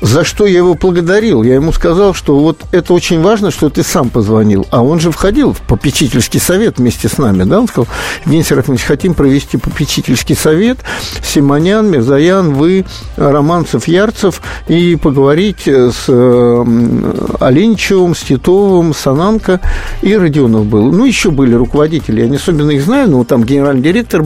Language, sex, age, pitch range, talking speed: Russian, male, 50-69, 135-185 Hz, 160 wpm